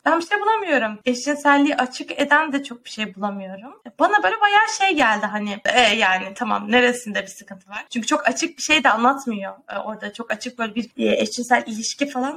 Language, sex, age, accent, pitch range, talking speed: Turkish, female, 20-39, native, 230-290 Hz, 200 wpm